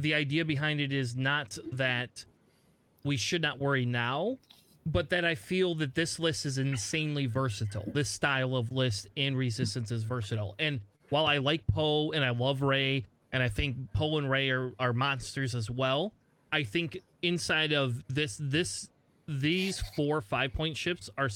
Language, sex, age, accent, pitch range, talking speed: English, male, 30-49, American, 130-160 Hz, 175 wpm